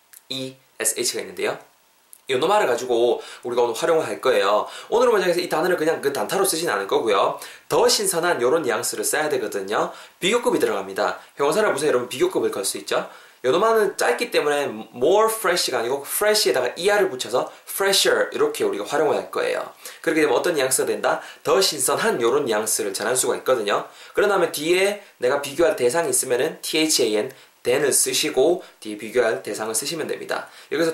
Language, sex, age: Korean, male, 20-39